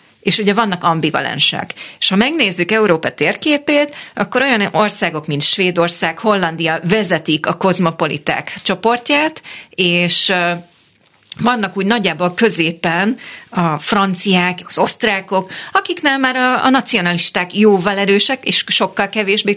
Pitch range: 170-215 Hz